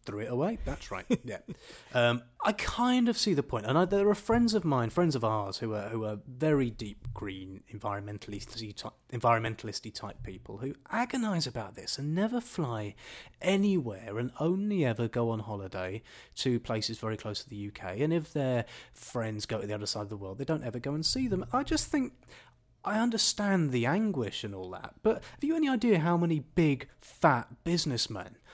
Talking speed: 200 wpm